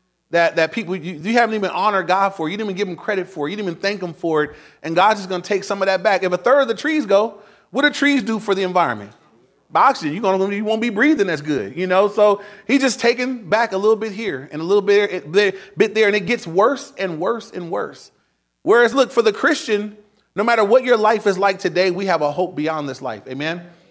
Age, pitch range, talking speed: 30-49, 185-235 Hz, 260 wpm